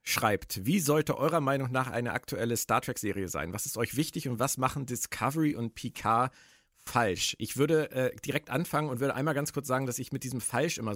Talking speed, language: 210 wpm, German